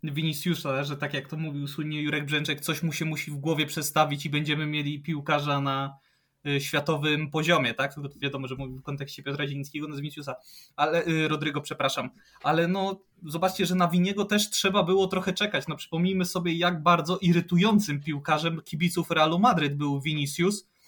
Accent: native